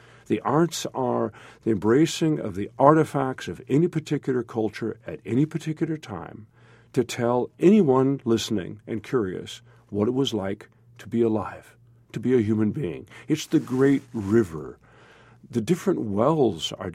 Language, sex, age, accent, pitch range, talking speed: English, male, 50-69, American, 105-135 Hz, 150 wpm